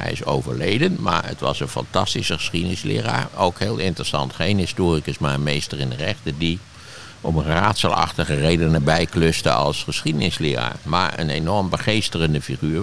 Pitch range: 80-110 Hz